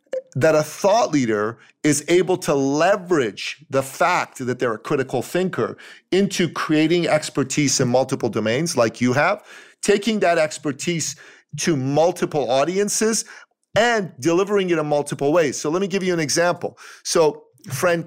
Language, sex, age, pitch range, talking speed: English, male, 40-59, 135-180 Hz, 150 wpm